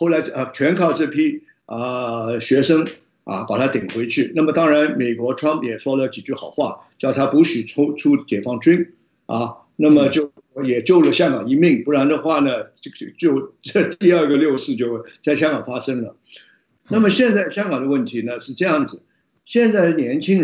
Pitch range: 135-195 Hz